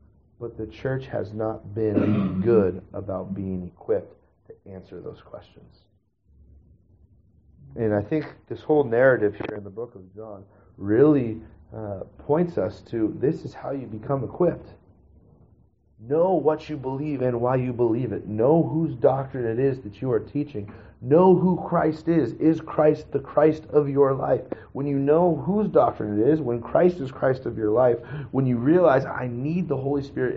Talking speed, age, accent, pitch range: 175 wpm, 40-59, American, 105-145 Hz